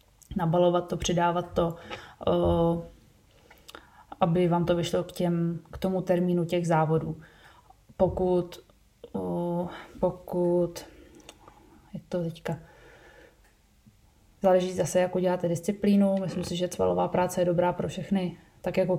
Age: 20-39